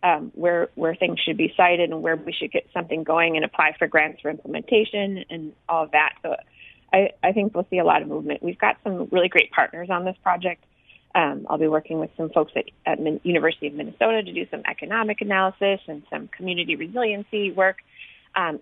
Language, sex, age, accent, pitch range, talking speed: English, female, 30-49, American, 160-205 Hz, 215 wpm